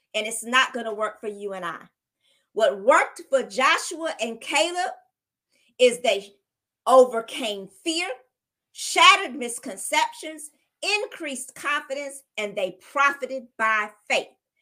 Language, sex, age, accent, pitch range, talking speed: English, female, 40-59, American, 235-330 Hz, 115 wpm